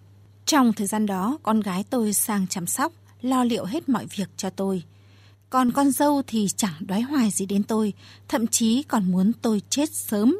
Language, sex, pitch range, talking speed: Vietnamese, female, 185-255 Hz, 195 wpm